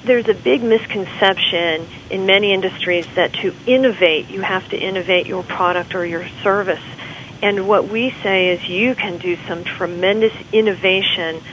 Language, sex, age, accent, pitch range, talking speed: English, female, 40-59, American, 175-215 Hz, 155 wpm